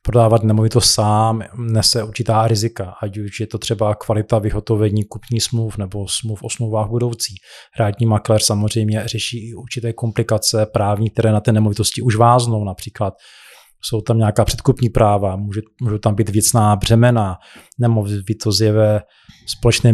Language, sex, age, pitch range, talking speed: Czech, male, 20-39, 110-120 Hz, 145 wpm